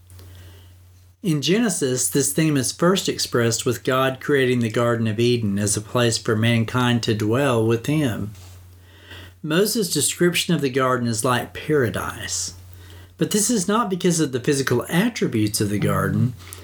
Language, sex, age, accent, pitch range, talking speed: English, male, 50-69, American, 100-140 Hz, 155 wpm